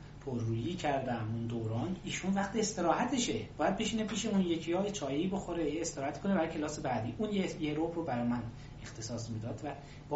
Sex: male